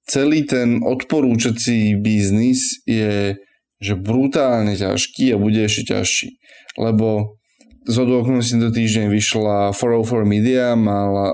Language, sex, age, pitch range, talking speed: Slovak, male, 20-39, 115-140 Hz, 115 wpm